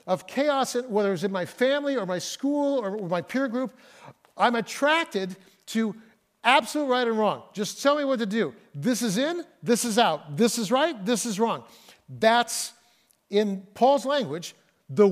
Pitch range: 185-240 Hz